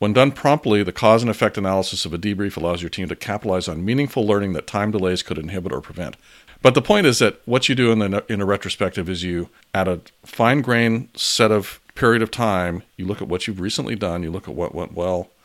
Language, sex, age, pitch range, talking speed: English, male, 40-59, 90-110 Hz, 240 wpm